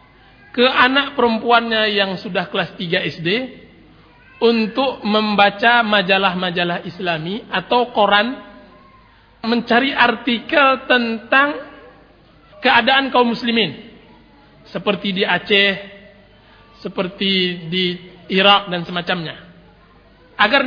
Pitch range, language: 185-235 Hz, Indonesian